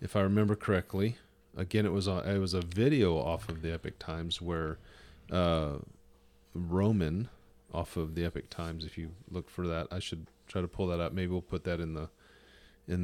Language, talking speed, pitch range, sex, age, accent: English, 200 wpm, 85-105 Hz, male, 40-59, American